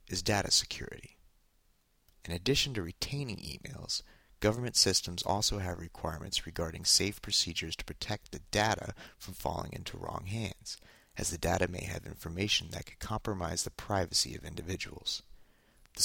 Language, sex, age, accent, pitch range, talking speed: English, male, 30-49, American, 85-105 Hz, 145 wpm